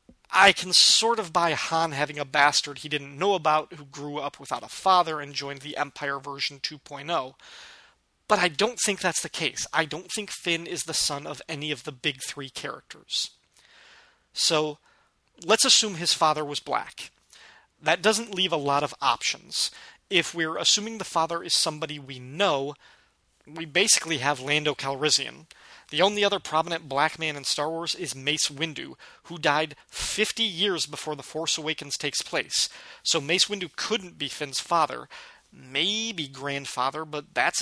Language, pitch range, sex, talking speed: English, 145-175 Hz, male, 170 wpm